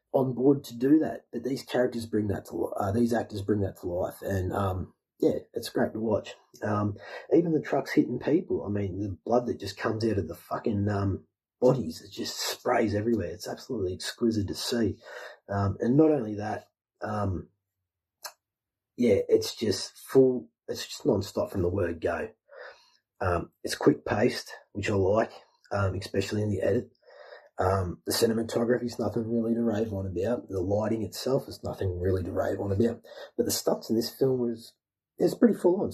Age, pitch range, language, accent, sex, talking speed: 30-49, 95-120 Hz, English, Australian, male, 185 wpm